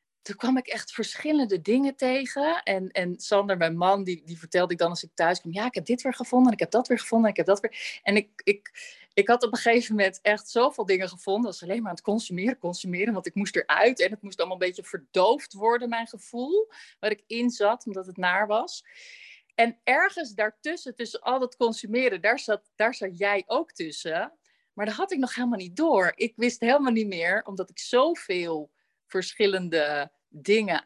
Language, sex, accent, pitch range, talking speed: Dutch, female, Dutch, 180-240 Hz, 215 wpm